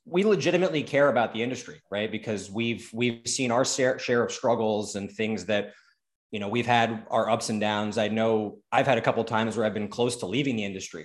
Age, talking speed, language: 20-39, 230 wpm, English